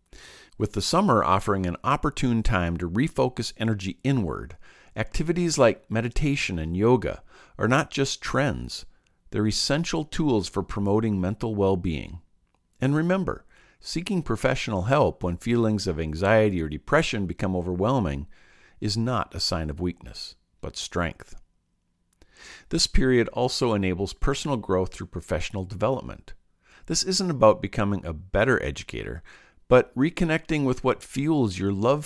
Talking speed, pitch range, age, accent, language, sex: 135 wpm, 90-130 Hz, 50-69, American, English, male